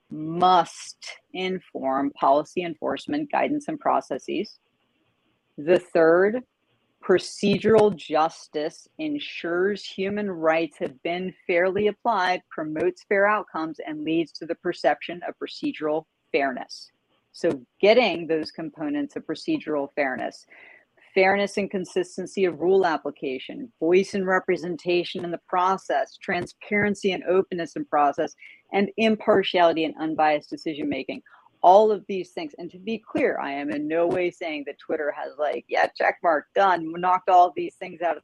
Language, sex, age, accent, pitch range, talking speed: English, female, 40-59, American, 165-205 Hz, 135 wpm